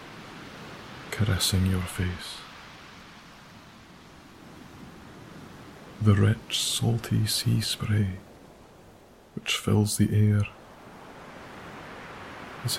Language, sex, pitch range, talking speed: English, male, 100-110 Hz, 60 wpm